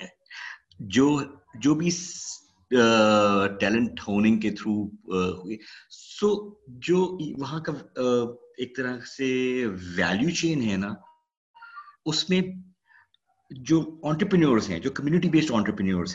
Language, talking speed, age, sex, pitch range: Urdu, 90 wpm, 50-69, male, 110-165 Hz